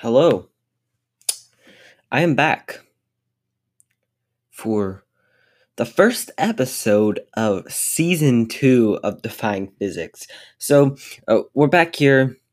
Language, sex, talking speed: English, male, 90 wpm